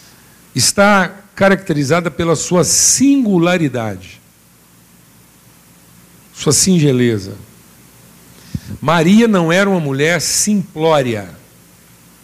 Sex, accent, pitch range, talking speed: male, Brazilian, 120-170 Hz, 65 wpm